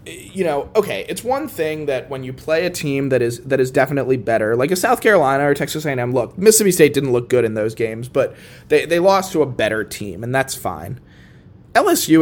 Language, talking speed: English, 225 wpm